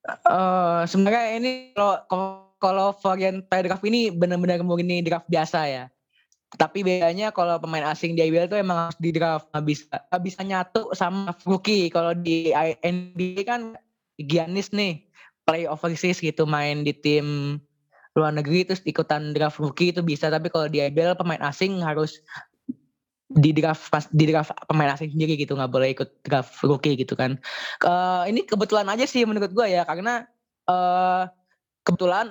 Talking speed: 150 wpm